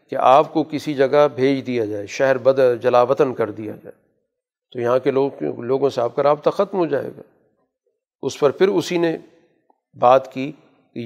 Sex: male